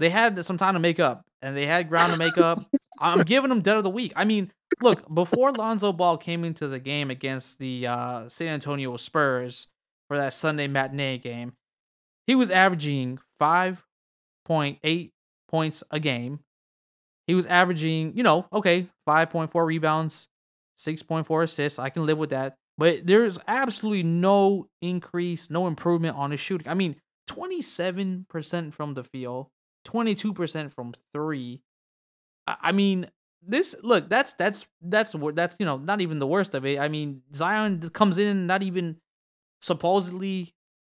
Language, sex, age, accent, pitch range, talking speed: English, male, 20-39, American, 145-190 Hz, 160 wpm